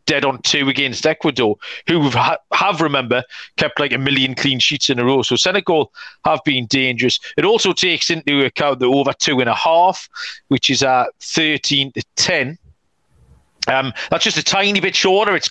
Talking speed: 190 wpm